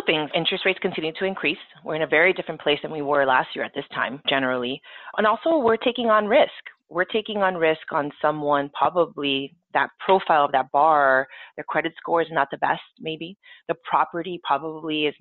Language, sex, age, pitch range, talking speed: English, female, 30-49, 145-195 Hz, 200 wpm